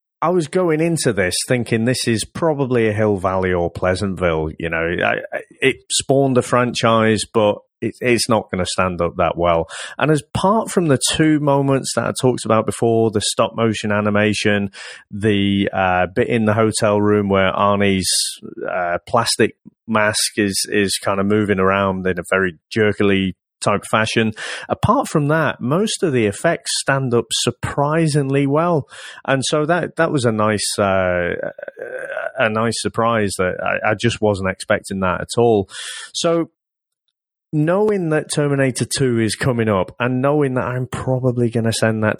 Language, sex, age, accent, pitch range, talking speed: English, male, 30-49, British, 100-135 Hz, 170 wpm